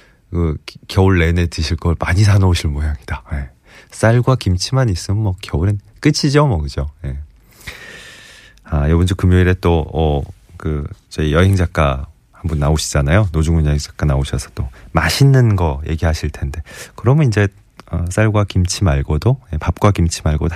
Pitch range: 80-110 Hz